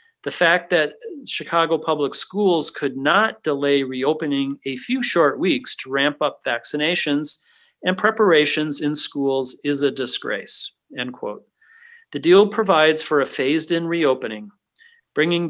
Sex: male